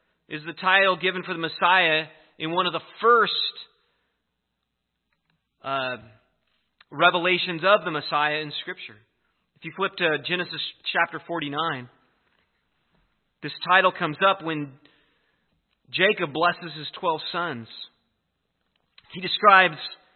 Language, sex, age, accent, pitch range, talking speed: English, male, 30-49, American, 150-185 Hz, 115 wpm